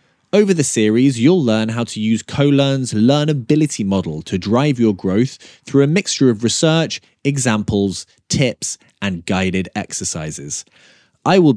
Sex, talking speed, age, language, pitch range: male, 140 wpm, 20-39, English, 100-140 Hz